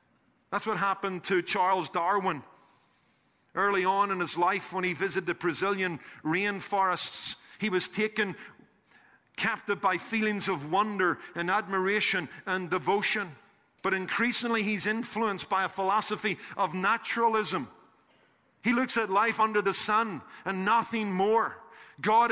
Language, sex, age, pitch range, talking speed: English, male, 50-69, 175-210 Hz, 130 wpm